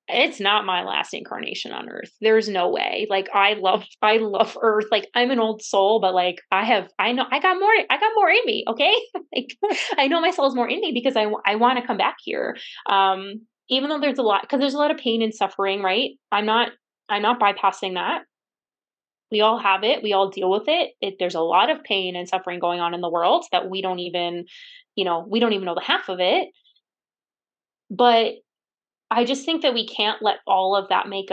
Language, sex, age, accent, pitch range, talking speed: English, female, 20-39, American, 190-245 Hz, 230 wpm